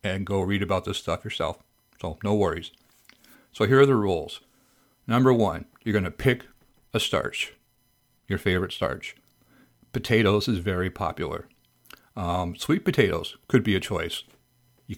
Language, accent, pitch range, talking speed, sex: English, American, 105-130 Hz, 150 wpm, male